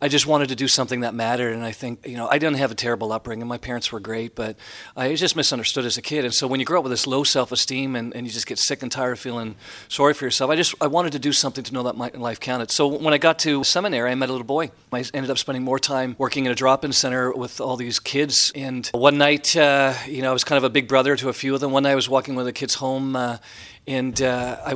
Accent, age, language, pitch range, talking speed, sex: American, 40-59, English, 120-135 Hz, 300 wpm, male